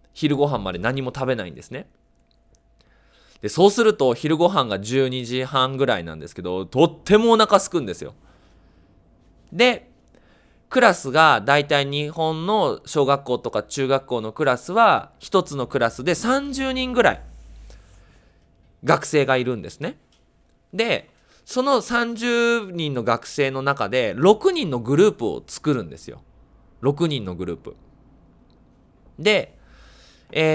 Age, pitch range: 20-39, 110-180 Hz